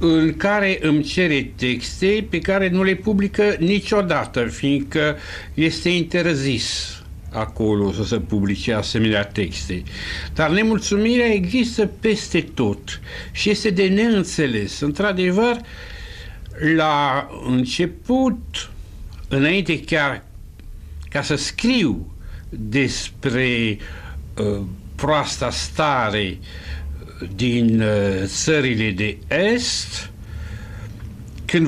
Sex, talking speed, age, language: male, 85 wpm, 60-79, Romanian